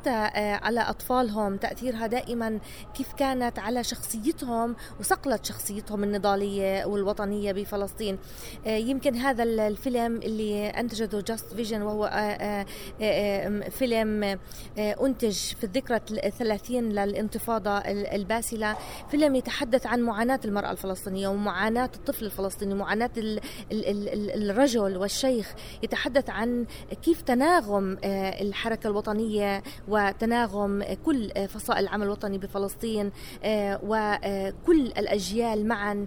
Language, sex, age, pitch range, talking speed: Arabic, female, 20-39, 205-245 Hz, 90 wpm